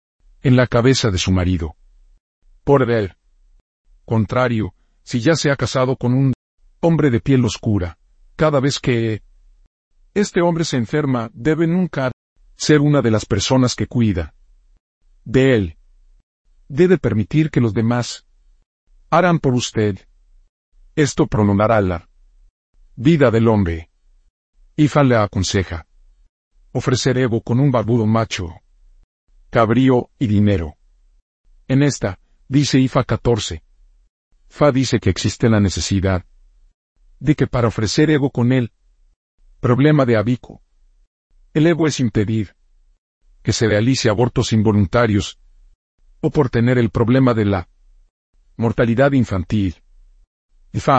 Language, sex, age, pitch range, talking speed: Spanish, male, 50-69, 85-130 Hz, 120 wpm